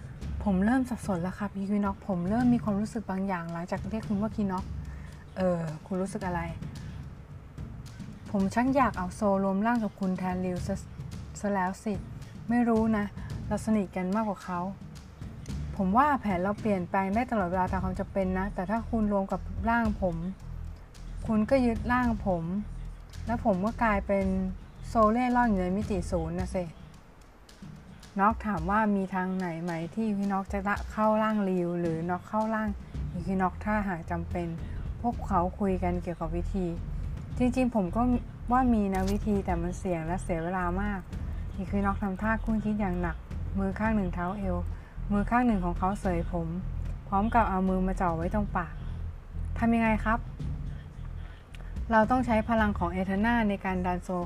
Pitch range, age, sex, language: 175-215 Hz, 20-39, female, Thai